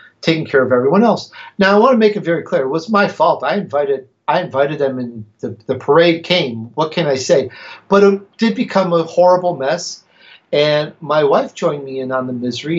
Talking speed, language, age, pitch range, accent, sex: 220 wpm, English, 50-69, 135-180 Hz, American, male